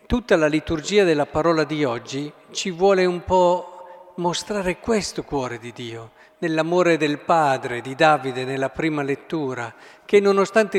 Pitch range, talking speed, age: 145-180 Hz, 145 wpm, 50-69